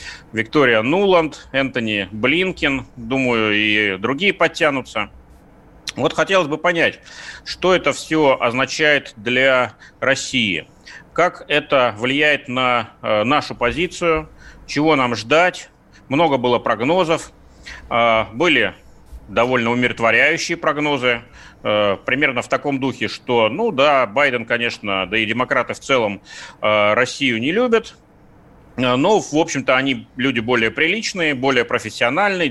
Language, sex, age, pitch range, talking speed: Russian, male, 30-49, 115-155 Hz, 110 wpm